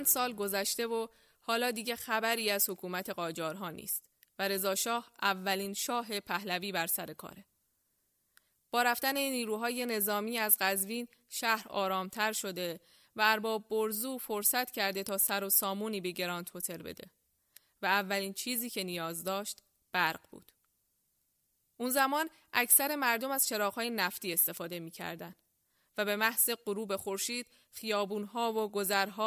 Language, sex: Persian, female